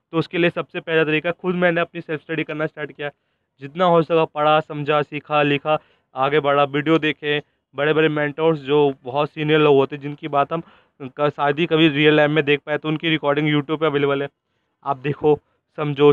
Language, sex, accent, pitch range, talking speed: Hindi, male, native, 140-155 Hz, 200 wpm